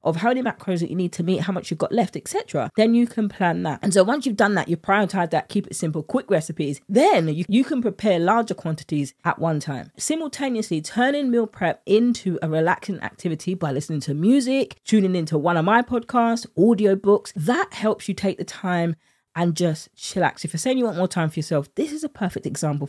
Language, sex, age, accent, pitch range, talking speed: English, female, 20-39, British, 160-230 Hz, 230 wpm